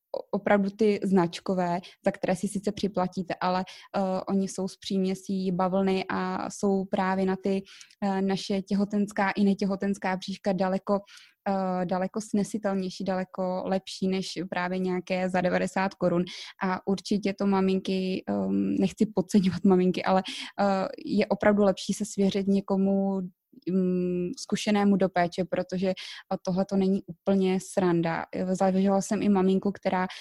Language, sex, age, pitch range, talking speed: Czech, female, 20-39, 185-200 Hz, 125 wpm